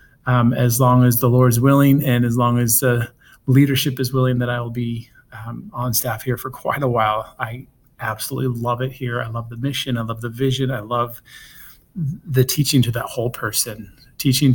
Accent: American